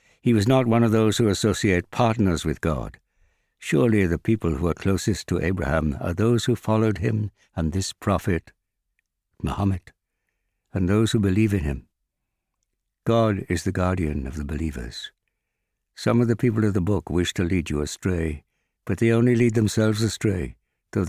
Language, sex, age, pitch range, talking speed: English, male, 60-79, 85-115 Hz, 170 wpm